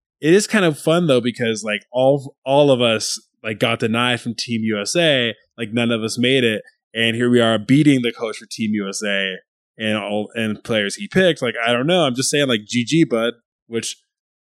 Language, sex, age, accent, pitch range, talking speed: English, male, 20-39, American, 110-145 Hz, 210 wpm